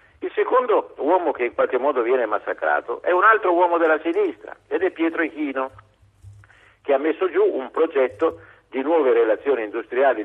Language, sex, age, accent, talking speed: Italian, male, 50-69, native, 170 wpm